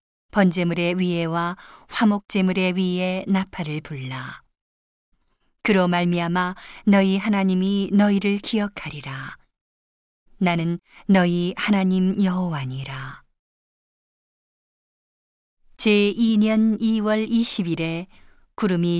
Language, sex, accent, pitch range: Korean, female, native, 170-200 Hz